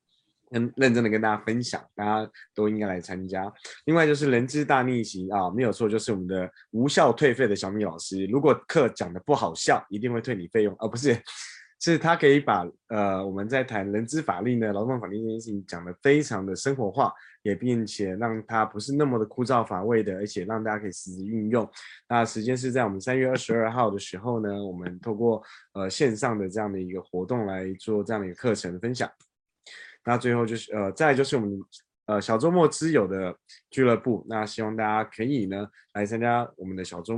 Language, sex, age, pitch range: Chinese, male, 20-39, 100-120 Hz